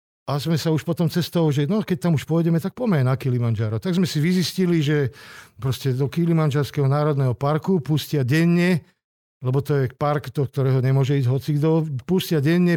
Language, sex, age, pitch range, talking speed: Slovak, male, 50-69, 135-170 Hz, 185 wpm